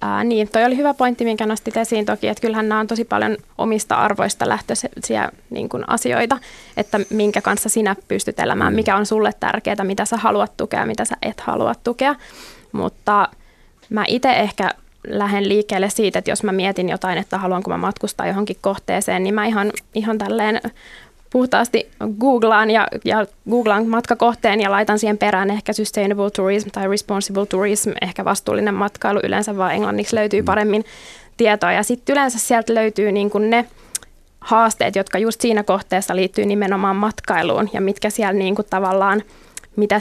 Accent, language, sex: native, Finnish, female